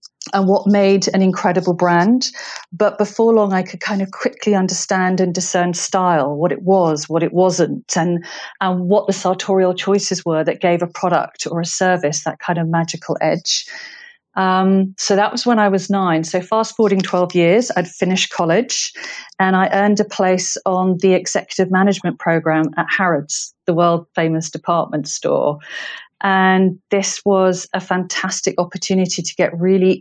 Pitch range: 175-200 Hz